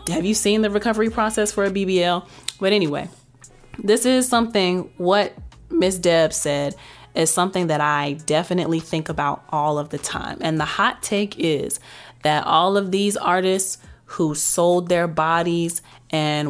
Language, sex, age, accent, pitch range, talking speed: English, female, 20-39, American, 150-180 Hz, 160 wpm